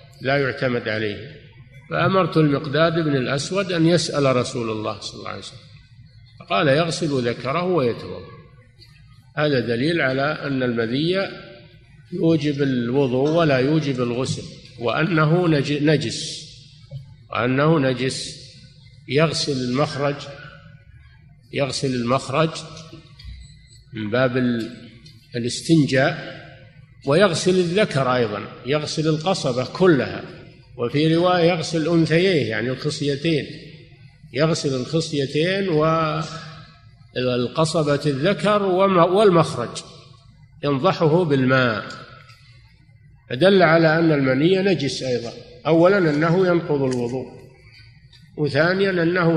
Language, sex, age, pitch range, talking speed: Arabic, male, 50-69, 130-160 Hz, 90 wpm